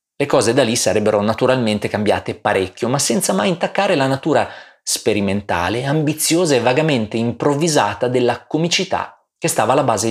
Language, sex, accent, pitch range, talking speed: Italian, male, native, 110-155 Hz, 150 wpm